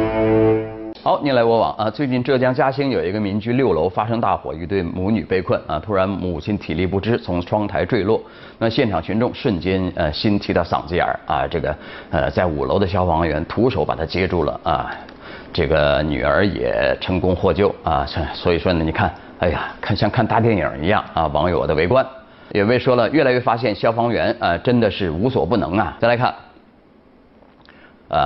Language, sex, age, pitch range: Chinese, male, 30-49, 90-110 Hz